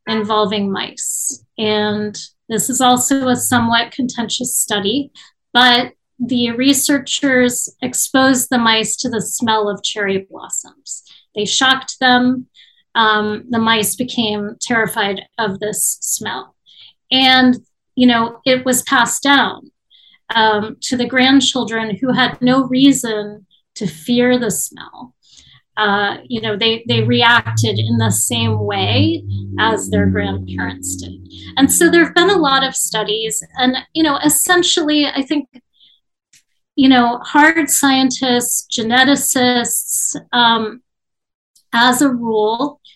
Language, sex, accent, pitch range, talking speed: English, female, American, 210-255 Hz, 125 wpm